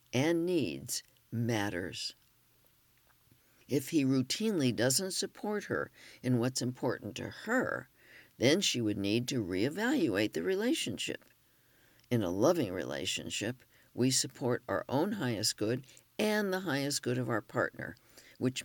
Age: 60-79